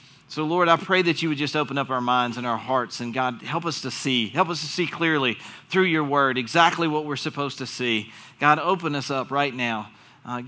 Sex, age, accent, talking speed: male, 40-59, American, 240 wpm